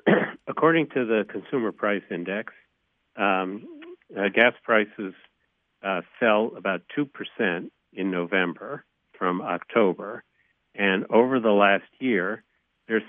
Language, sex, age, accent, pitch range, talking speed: English, male, 60-79, American, 95-115 Hz, 110 wpm